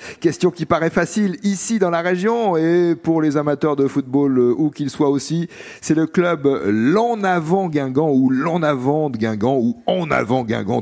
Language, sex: French, male